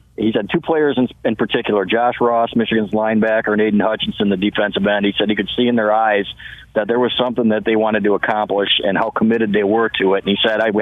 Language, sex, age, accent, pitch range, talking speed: English, male, 50-69, American, 110-130 Hz, 255 wpm